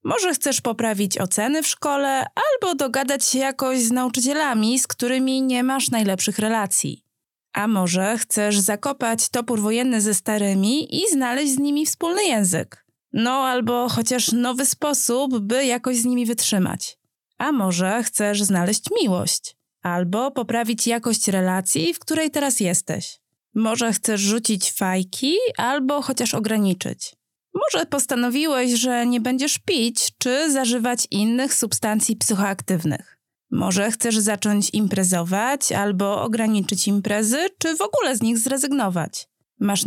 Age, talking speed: 20-39, 130 wpm